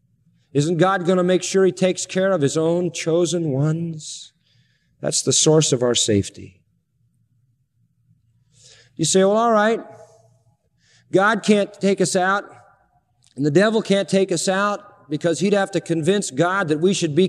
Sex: male